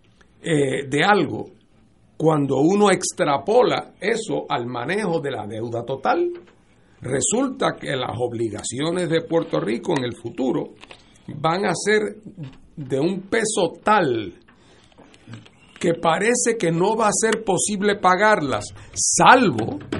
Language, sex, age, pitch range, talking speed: Spanish, male, 60-79, 140-180 Hz, 120 wpm